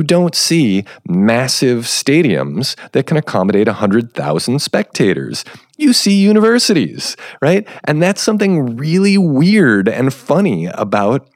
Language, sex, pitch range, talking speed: English, male, 110-170 Hz, 110 wpm